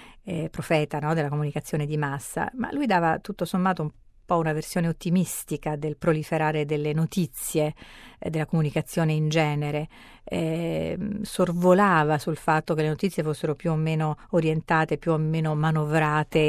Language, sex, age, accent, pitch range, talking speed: Italian, female, 40-59, native, 155-185 Hz, 150 wpm